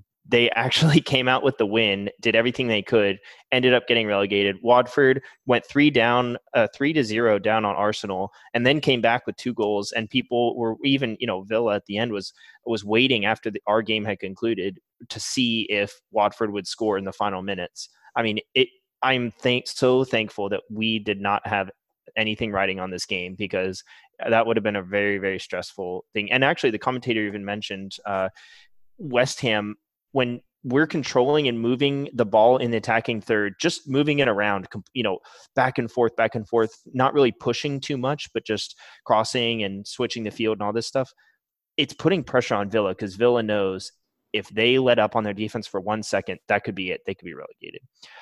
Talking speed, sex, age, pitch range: 205 wpm, male, 20-39, 105-130 Hz